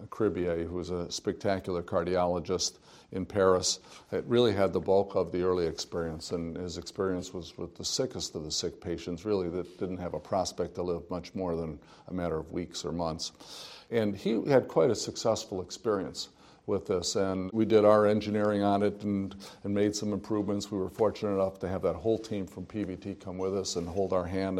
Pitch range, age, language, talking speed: 90-105 Hz, 50-69, English, 200 wpm